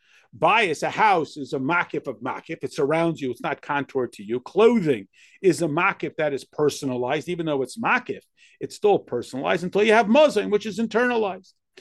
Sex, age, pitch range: male, 50-69, 140-210 Hz